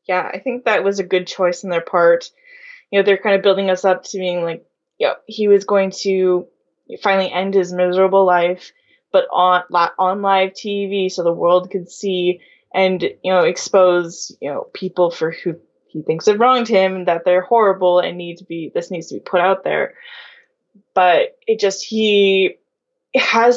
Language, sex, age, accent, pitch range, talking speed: English, female, 10-29, American, 180-290 Hz, 195 wpm